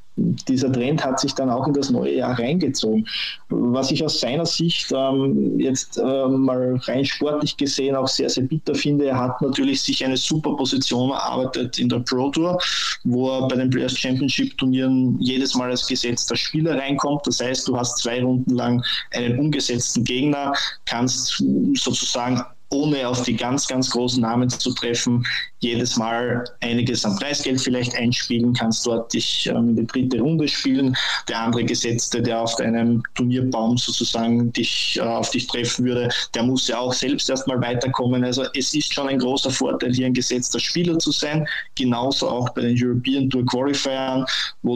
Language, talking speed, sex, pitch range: German, 175 wpm, male, 120-135 Hz